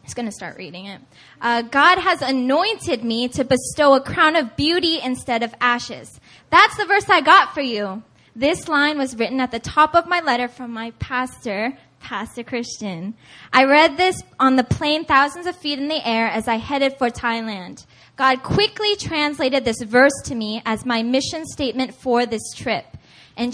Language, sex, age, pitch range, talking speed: English, female, 10-29, 240-295 Hz, 190 wpm